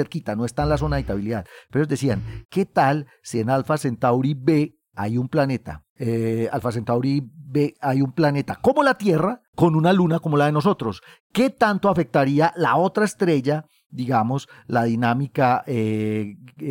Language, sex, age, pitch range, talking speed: Spanish, male, 40-59, 120-160 Hz, 170 wpm